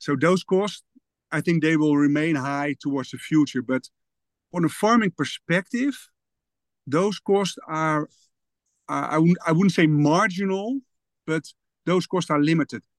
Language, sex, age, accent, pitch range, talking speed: English, male, 50-69, Dutch, 145-190 Hz, 145 wpm